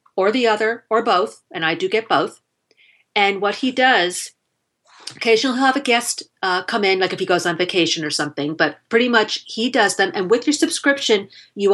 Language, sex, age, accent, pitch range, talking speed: English, female, 40-59, American, 175-230 Hz, 210 wpm